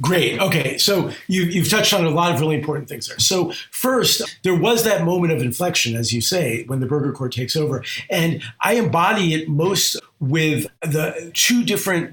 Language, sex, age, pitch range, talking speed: English, male, 50-69, 130-170 Hz, 195 wpm